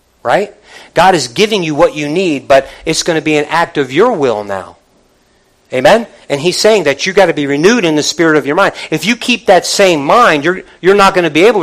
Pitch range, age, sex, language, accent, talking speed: 160-205 Hz, 50-69, male, English, American, 250 wpm